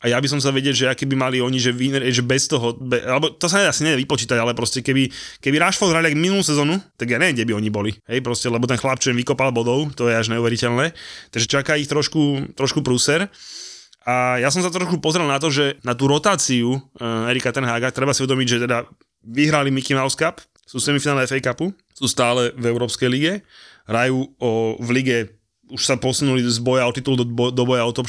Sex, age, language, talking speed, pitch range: male, 20-39, Slovak, 215 wpm, 120-140 Hz